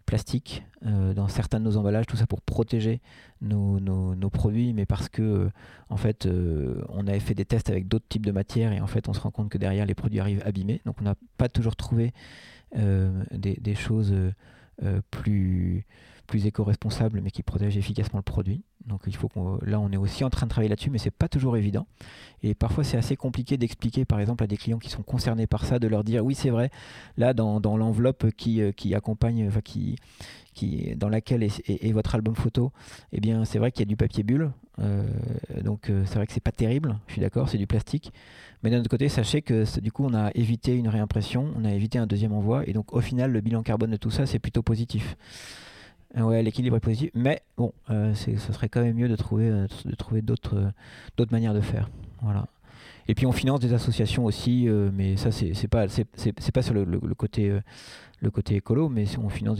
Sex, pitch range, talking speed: male, 105-120 Hz, 230 wpm